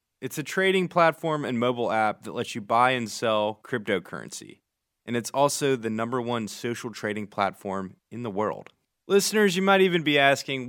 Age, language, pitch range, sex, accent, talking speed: 20-39, English, 100-140 Hz, male, American, 180 wpm